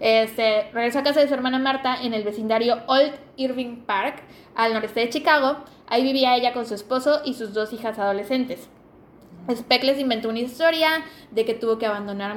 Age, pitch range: 10-29, 210-270 Hz